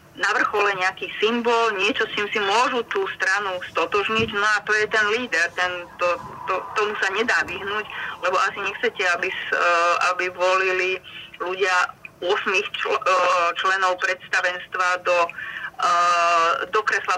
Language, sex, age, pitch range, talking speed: Slovak, female, 30-49, 185-230 Hz, 135 wpm